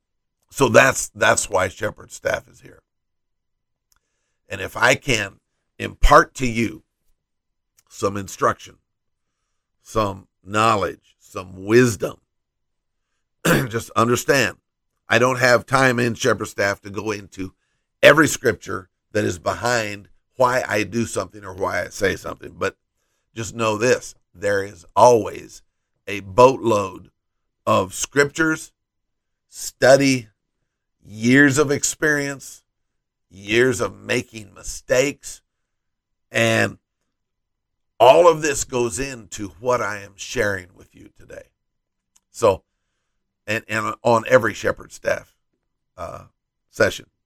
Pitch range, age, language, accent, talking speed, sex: 100-130 Hz, 50-69, English, American, 110 wpm, male